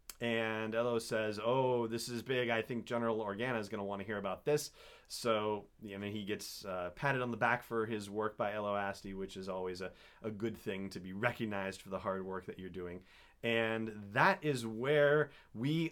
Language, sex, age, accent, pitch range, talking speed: English, male, 30-49, American, 100-125 Hz, 205 wpm